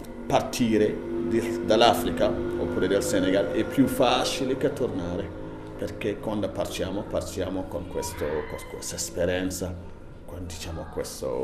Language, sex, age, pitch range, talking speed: Italian, male, 40-59, 80-95 Hz, 110 wpm